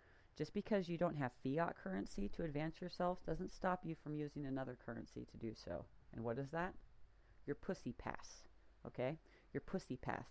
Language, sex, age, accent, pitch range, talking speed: English, female, 40-59, American, 125-170 Hz, 180 wpm